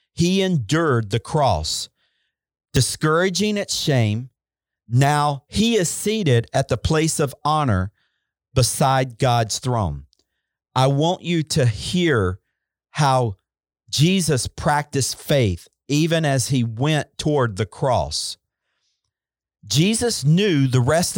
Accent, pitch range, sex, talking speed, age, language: American, 125-175 Hz, male, 110 wpm, 40-59, English